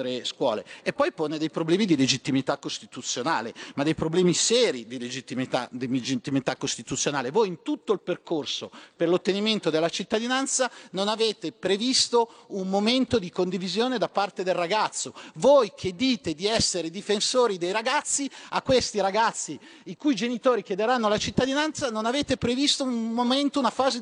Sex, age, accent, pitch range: male, 40-59, native, 195-270 Hz